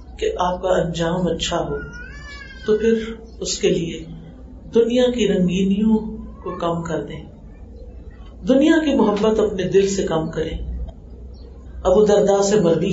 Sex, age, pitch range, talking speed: female, 50-69, 145-220 Hz, 140 wpm